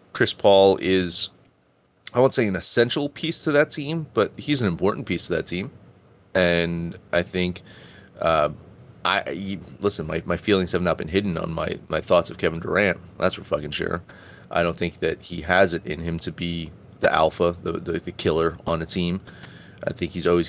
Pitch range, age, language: 90-120 Hz, 30-49, English